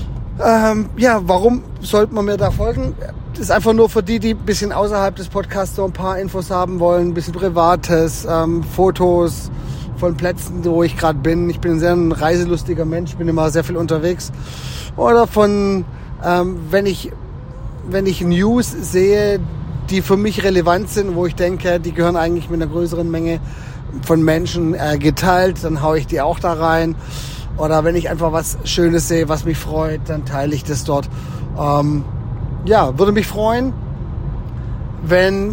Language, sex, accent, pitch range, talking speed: German, male, German, 145-185 Hz, 175 wpm